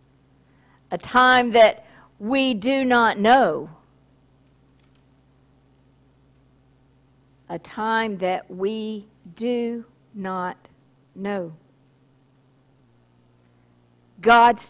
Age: 50-69